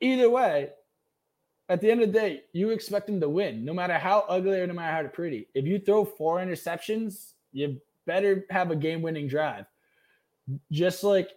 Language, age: English, 20-39